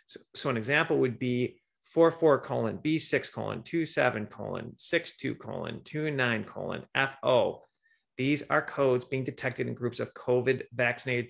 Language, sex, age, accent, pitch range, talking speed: English, male, 30-49, American, 125-160 Hz, 145 wpm